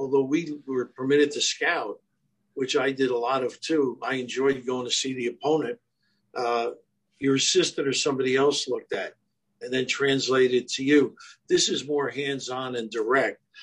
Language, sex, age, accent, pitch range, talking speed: English, male, 60-79, American, 130-160 Hz, 170 wpm